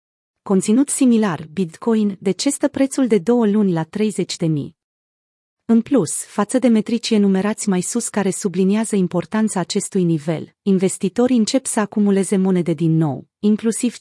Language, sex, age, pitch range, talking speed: Romanian, female, 30-49, 185-230 Hz, 135 wpm